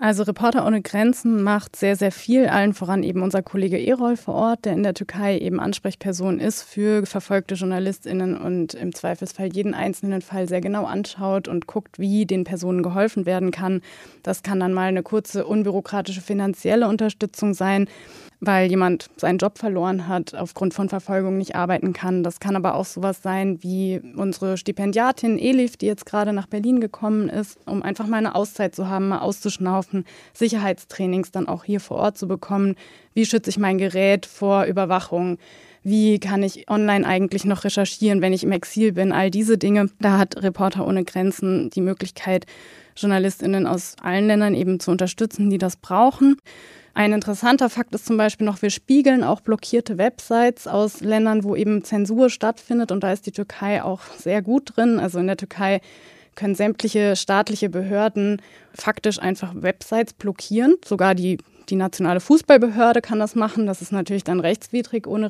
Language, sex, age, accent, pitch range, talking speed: German, female, 20-39, German, 185-215 Hz, 175 wpm